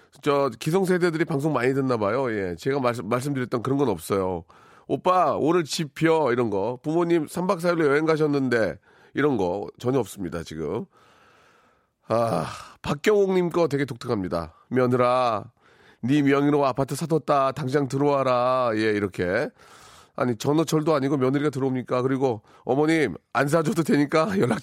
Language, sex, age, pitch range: Korean, male, 40-59, 130-170 Hz